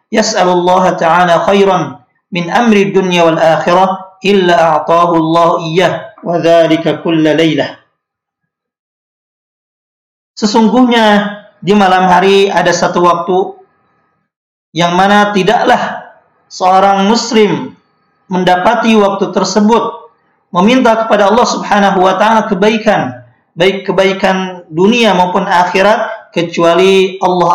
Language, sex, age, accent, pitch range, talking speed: Indonesian, male, 50-69, native, 175-210 Hz, 85 wpm